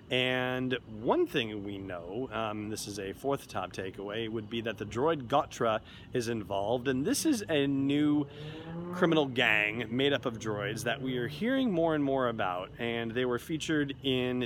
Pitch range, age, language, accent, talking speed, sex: 105-130 Hz, 30-49, English, American, 185 wpm, male